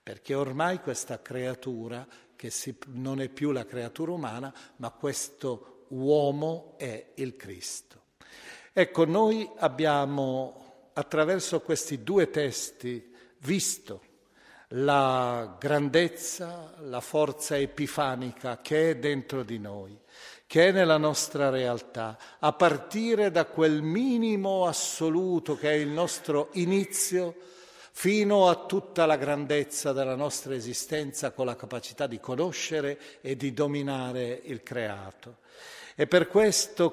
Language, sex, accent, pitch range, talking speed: Italian, male, native, 130-165 Hz, 115 wpm